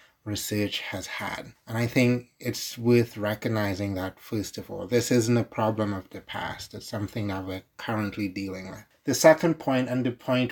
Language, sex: English, male